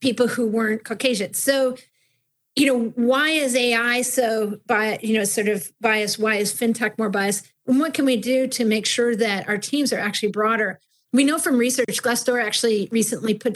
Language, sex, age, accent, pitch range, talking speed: English, female, 40-59, American, 205-245 Hz, 195 wpm